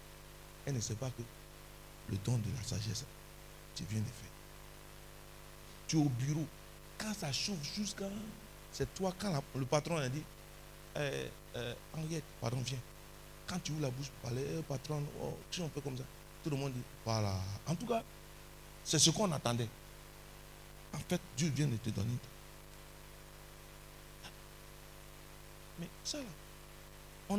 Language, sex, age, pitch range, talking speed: French, male, 50-69, 125-170 Hz, 160 wpm